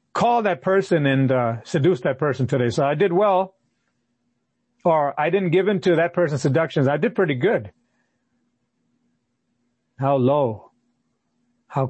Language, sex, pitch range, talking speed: English, male, 120-155 Hz, 145 wpm